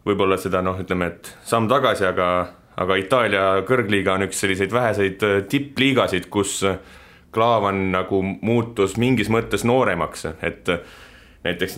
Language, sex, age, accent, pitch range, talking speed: English, male, 30-49, Finnish, 95-115 Hz, 125 wpm